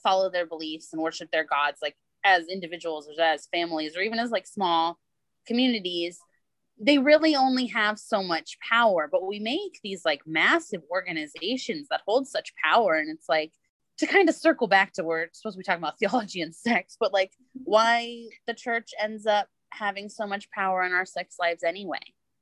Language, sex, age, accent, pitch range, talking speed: English, female, 20-39, American, 165-235 Hz, 195 wpm